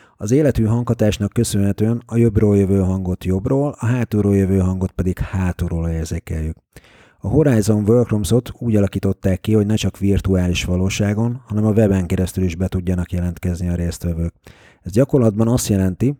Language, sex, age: Hungarian, male, 30-49